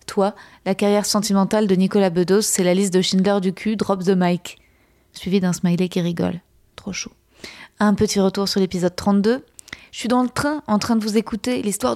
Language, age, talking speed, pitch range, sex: French, 20-39, 205 wpm, 190-220 Hz, female